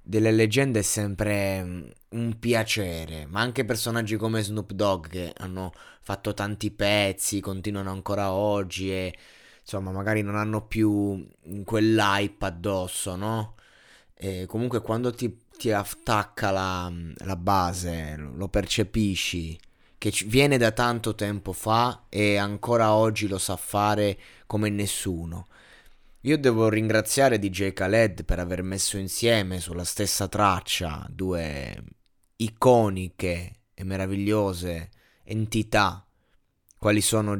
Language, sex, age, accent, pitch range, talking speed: Italian, male, 20-39, native, 95-110 Hz, 115 wpm